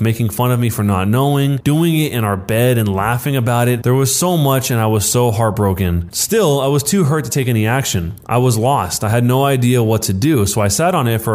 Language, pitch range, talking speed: English, 105-135 Hz, 265 wpm